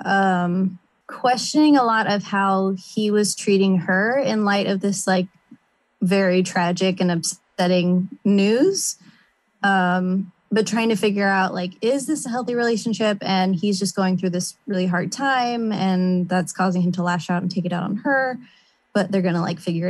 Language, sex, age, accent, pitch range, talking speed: English, female, 20-39, American, 185-215 Hz, 180 wpm